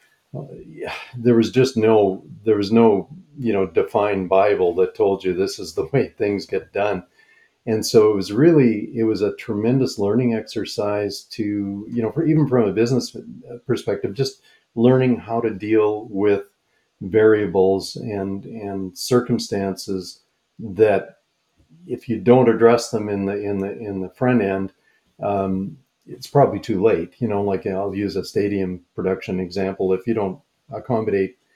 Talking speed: 160 wpm